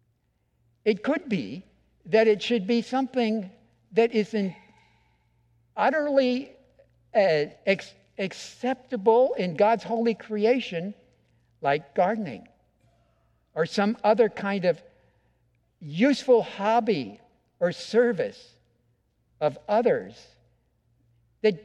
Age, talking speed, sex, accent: 60-79, 85 wpm, male, American